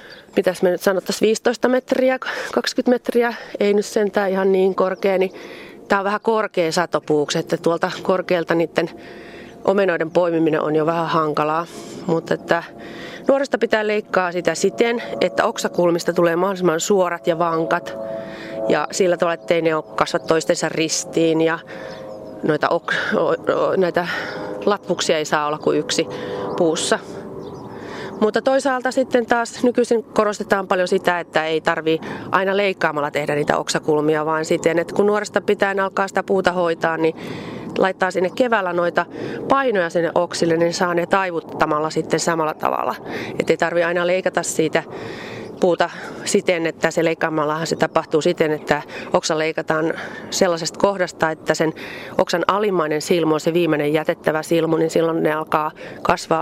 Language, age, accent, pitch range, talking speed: Finnish, 30-49, native, 160-195 Hz, 150 wpm